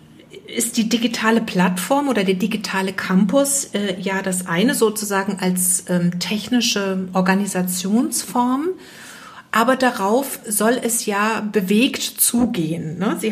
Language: German